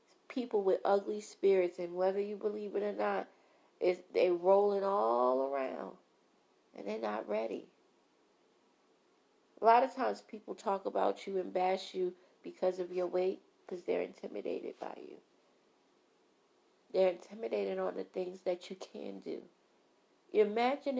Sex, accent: female, American